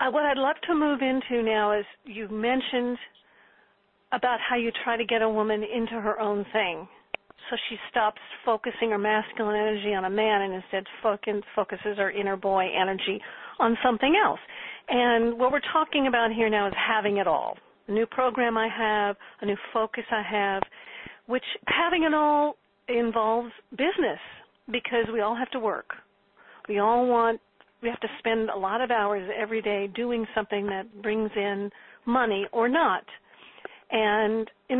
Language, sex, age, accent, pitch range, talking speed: English, female, 50-69, American, 210-245 Hz, 170 wpm